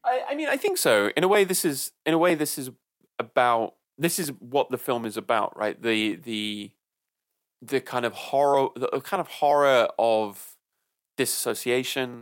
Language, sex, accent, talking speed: English, male, British, 180 wpm